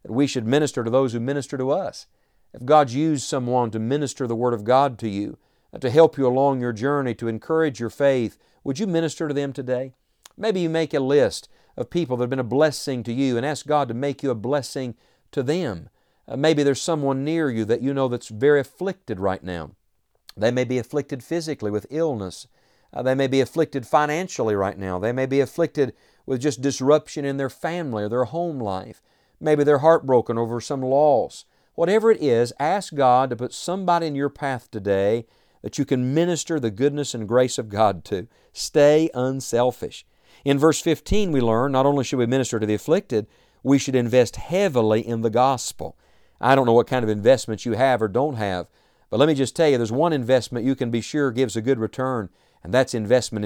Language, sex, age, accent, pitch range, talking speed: English, male, 50-69, American, 115-145 Hz, 210 wpm